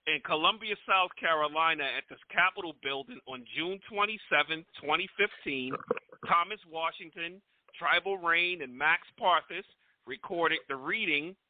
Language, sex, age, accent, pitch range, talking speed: English, male, 40-59, American, 145-190 Hz, 115 wpm